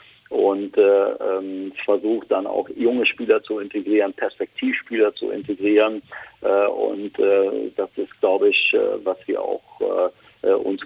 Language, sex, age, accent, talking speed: German, male, 50-69, German, 145 wpm